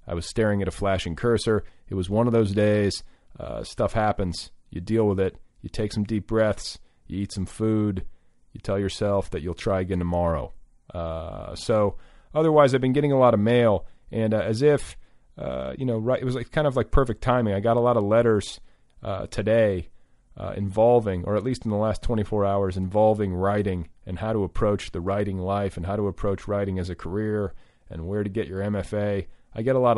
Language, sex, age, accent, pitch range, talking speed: English, male, 40-59, American, 95-115 Hz, 215 wpm